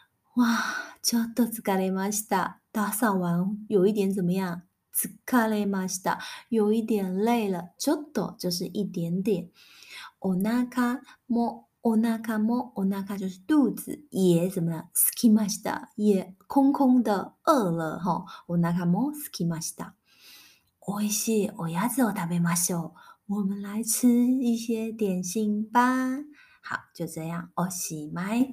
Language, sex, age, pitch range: Chinese, female, 20-39, 180-235 Hz